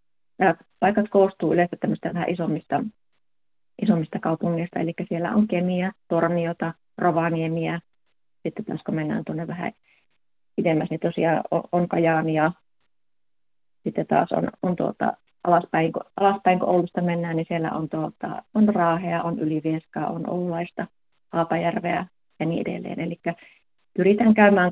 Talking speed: 130 wpm